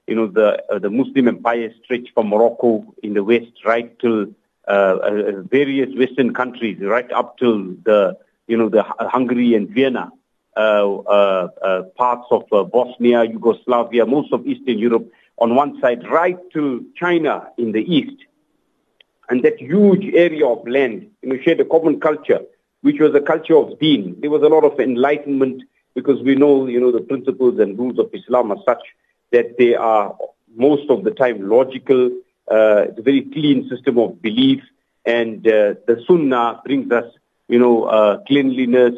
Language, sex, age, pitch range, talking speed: English, male, 60-79, 115-150 Hz, 175 wpm